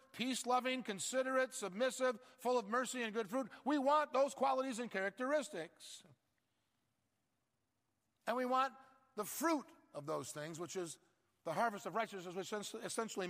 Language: English